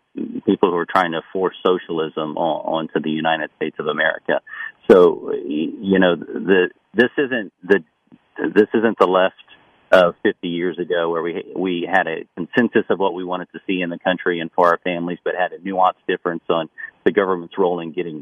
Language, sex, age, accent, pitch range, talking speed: English, male, 40-59, American, 85-100 Hz, 190 wpm